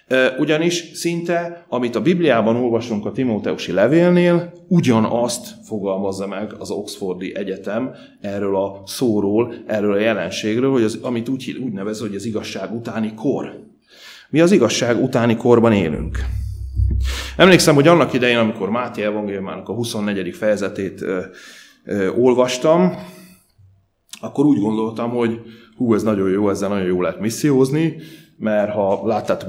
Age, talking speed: 30-49, 135 wpm